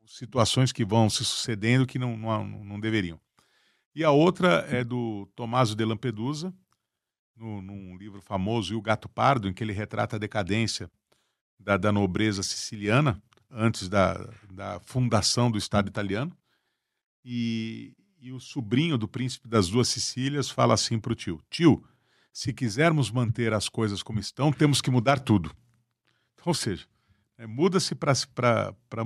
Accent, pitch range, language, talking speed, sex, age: Brazilian, 110-130 Hz, Portuguese, 155 wpm, male, 50-69